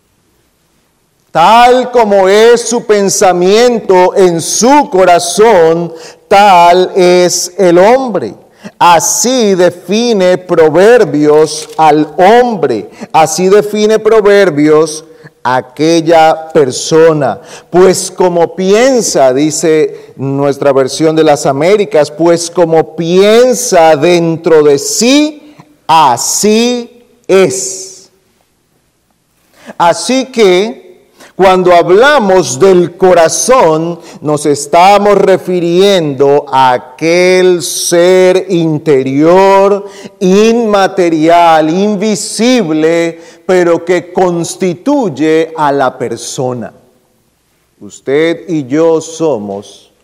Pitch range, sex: 155-200 Hz, male